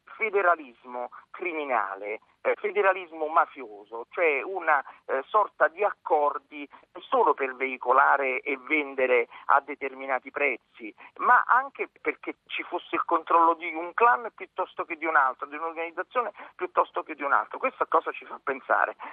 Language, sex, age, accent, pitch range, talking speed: Italian, male, 40-59, native, 145-235 Hz, 140 wpm